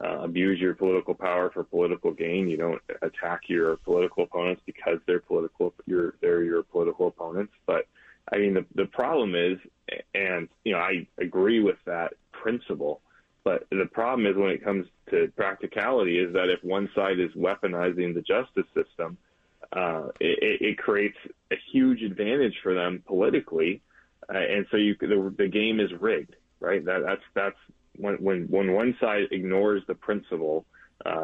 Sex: male